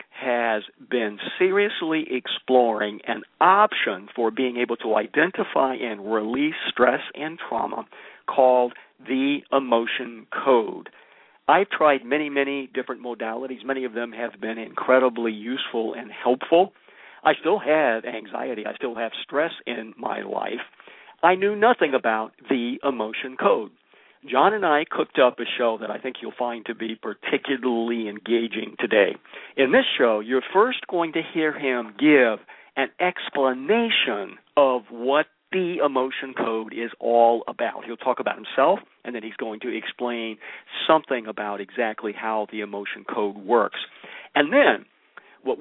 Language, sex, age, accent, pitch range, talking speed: English, male, 50-69, American, 110-155 Hz, 145 wpm